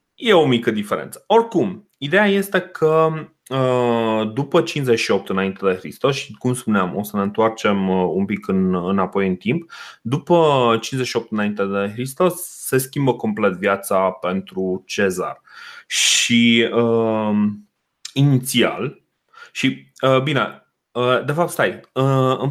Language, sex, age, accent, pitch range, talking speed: Romanian, male, 30-49, native, 105-145 Hz, 120 wpm